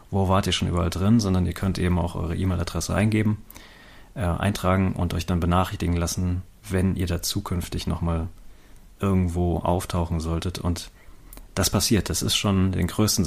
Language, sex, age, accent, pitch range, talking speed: German, male, 30-49, German, 85-100 Hz, 165 wpm